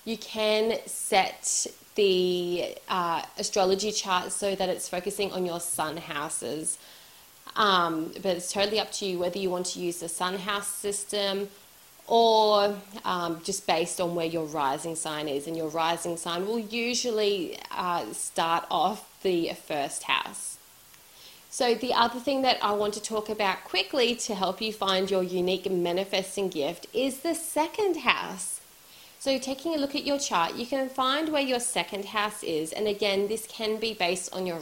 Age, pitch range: 30-49, 180-230 Hz